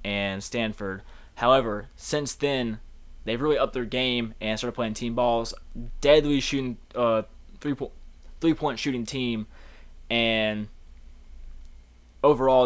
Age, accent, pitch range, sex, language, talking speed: 20-39, American, 105-125 Hz, male, English, 125 wpm